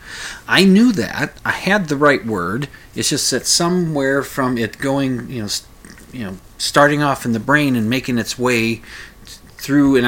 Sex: male